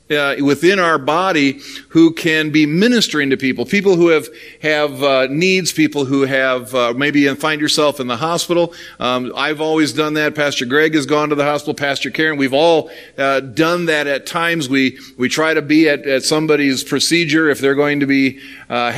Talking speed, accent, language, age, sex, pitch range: 200 wpm, American, English, 40-59, male, 135-160 Hz